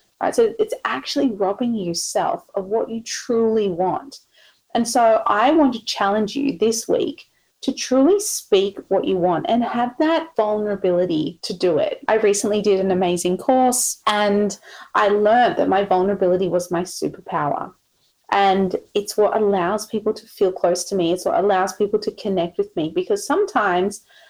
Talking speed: 170 wpm